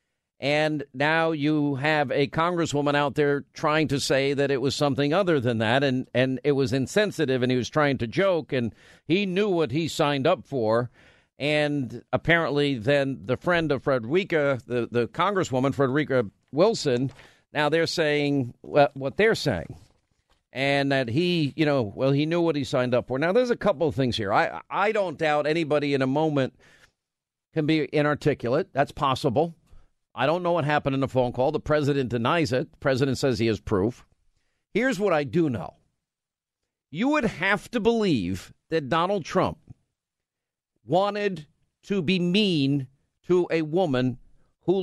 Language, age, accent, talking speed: English, 50-69, American, 170 wpm